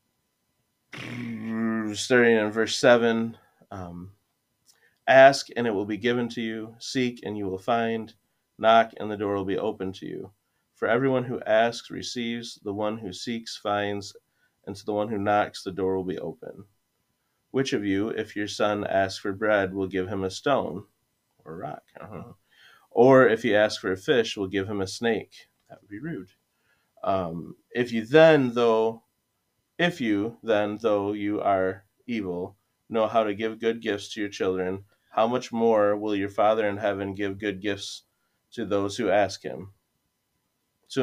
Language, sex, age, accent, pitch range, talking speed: English, male, 30-49, American, 100-115 Hz, 175 wpm